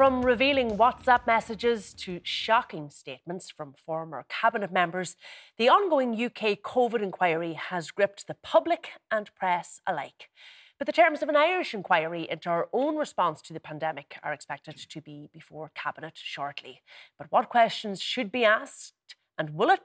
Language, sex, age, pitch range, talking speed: English, female, 30-49, 160-235 Hz, 160 wpm